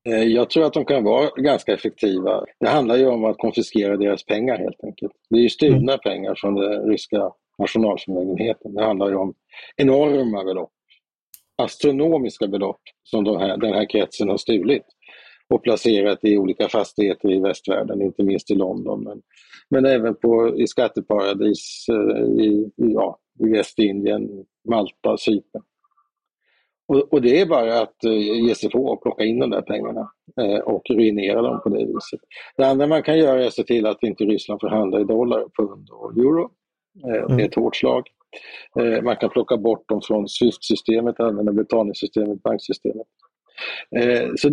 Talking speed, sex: 165 wpm, male